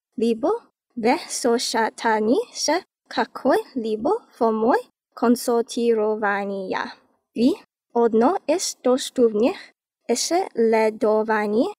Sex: female